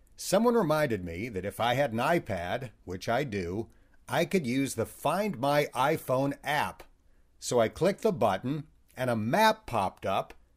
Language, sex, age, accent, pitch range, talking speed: English, male, 50-69, American, 110-160 Hz, 170 wpm